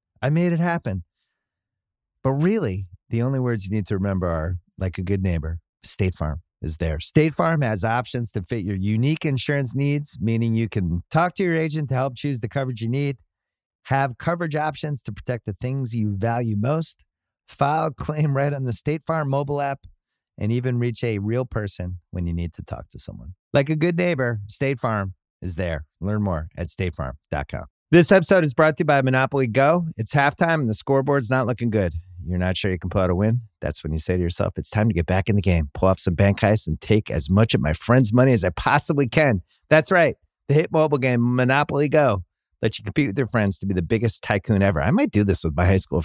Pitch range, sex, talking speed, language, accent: 95-140 Hz, male, 230 wpm, English, American